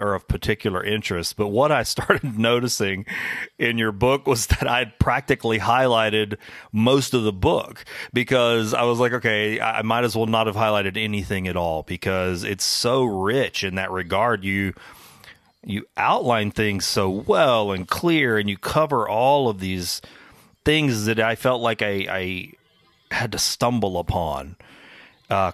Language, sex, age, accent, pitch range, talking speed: English, male, 40-59, American, 95-115 Hz, 165 wpm